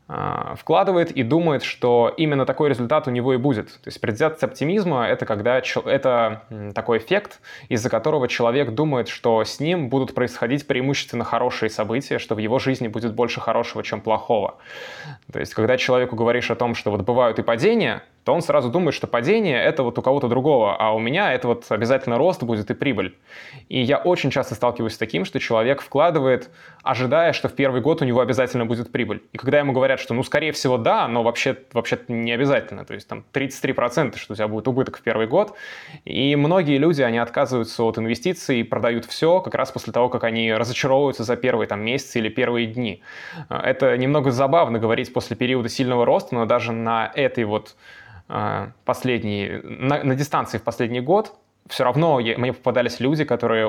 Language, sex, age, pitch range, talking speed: Russian, male, 20-39, 115-135 Hz, 185 wpm